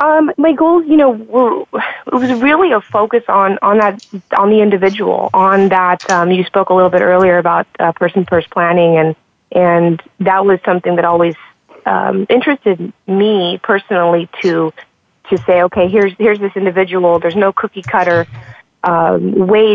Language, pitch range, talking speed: English, 175-200 Hz, 170 wpm